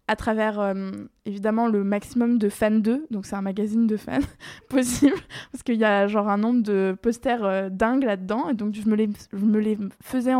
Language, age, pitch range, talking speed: French, 20-39, 205-235 Hz, 200 wpm